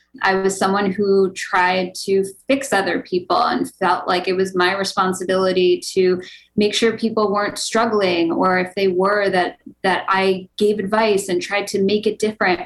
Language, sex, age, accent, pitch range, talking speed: English, female, 20-39, American, 180-215 Hz, 175 wpm